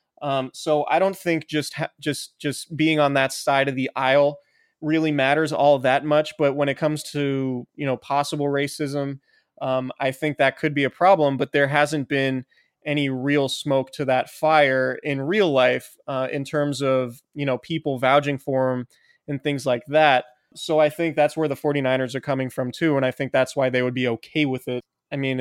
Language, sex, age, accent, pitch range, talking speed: English, male, 20-39, American, 130-150 Hz, 210 wpm